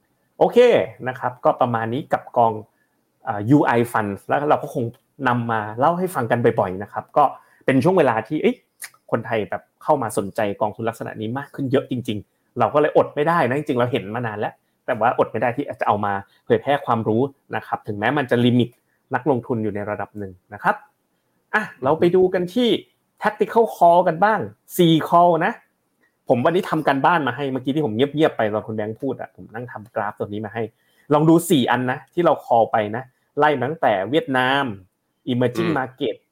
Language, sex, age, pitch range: Thai, male, 30-49, 115-150 Hz